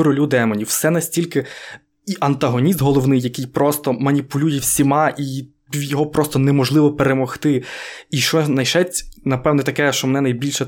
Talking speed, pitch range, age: 135 wpm, 135-155 Hz, 20-39